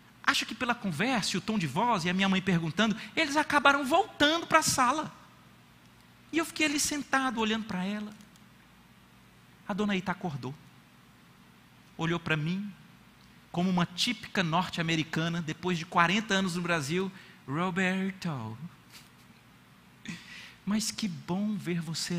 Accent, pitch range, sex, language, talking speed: Brazilian, 155-215 Hz, male, Portuguese, 140 wpm